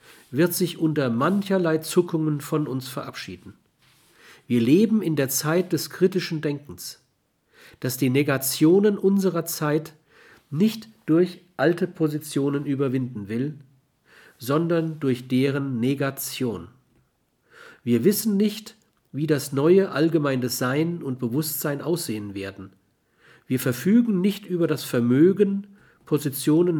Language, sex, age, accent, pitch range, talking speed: German, male, 50-69, German, 130-175 Hz, 110 wpm